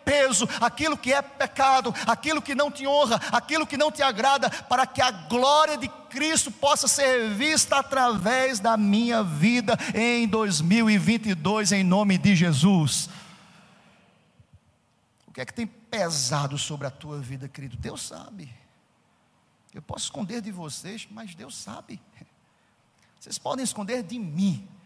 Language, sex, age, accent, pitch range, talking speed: Portuguese, male, 50-69, Brazilian, 170-240 Hz, 140 wpm